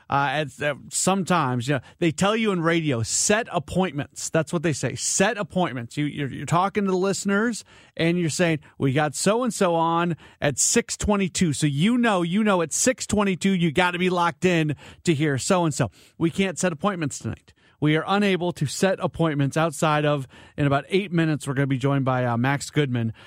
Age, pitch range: 30-49, 130-165 Hz